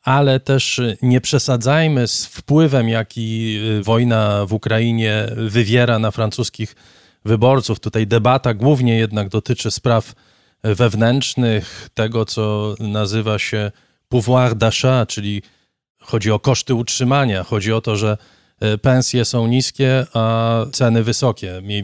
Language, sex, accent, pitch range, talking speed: Polish, male, native, 110-135 Hz, 120 wpm